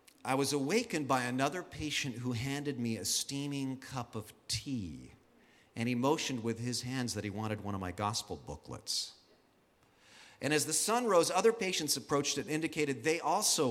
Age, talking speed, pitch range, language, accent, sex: 40-59, 180 wpm, 120-170 Hz, English, American, male